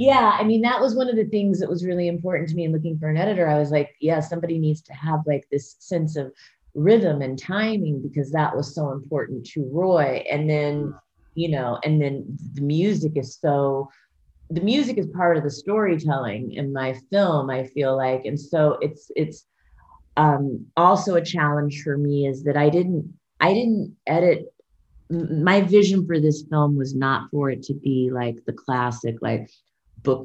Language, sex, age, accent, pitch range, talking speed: English, female, 30-49, American, 140-180 Hz, 195 wpm